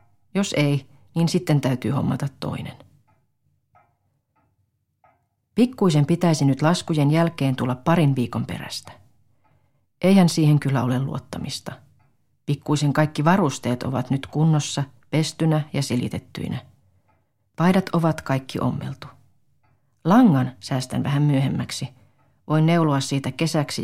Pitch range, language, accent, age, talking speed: 125-155 Hz, Finnish, native, 40-59, 105 wpm